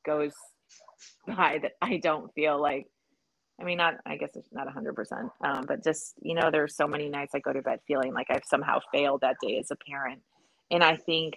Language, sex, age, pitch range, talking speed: English, female, 30-49, 155-185 Hz, 220 wpm